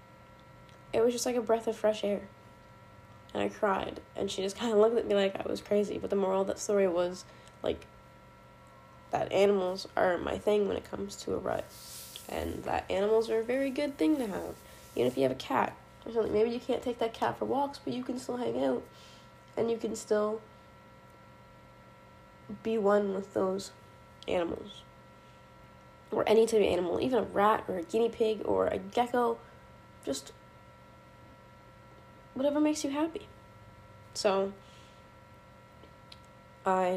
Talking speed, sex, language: 170 wpm, female, English